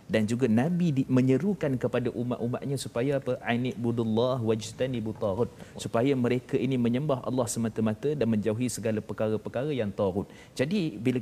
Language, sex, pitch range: Malayalam, male, 115-145 Hz